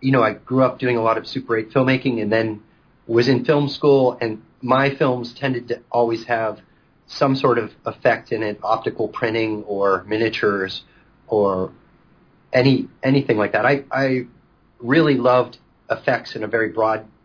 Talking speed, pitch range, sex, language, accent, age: 170 wpm, 105-130 Hz, male, English, American, 40-59